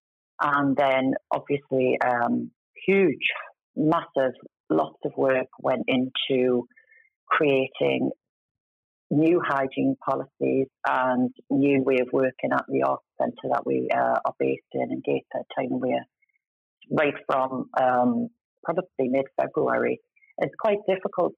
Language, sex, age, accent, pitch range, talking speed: English, female, 40-59, British, 130-170 Hz, 125 wpm